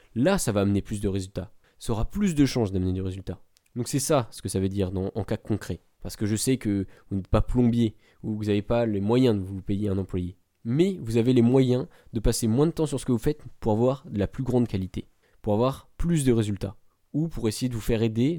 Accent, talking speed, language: French, 265 wpm, French